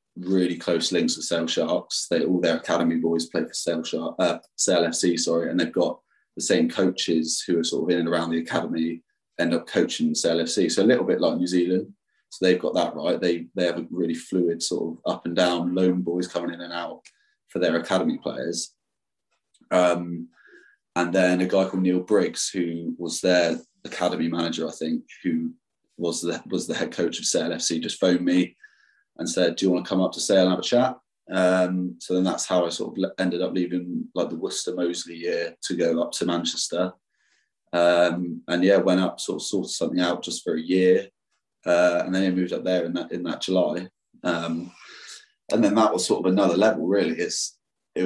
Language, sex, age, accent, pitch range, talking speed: English, male, 20-39, British, 85-90 Hz, 215 wpm